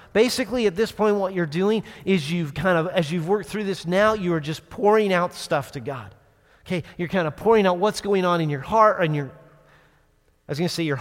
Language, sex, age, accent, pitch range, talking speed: English, male, 40-59, American, 150-205 Hz, 245 wpm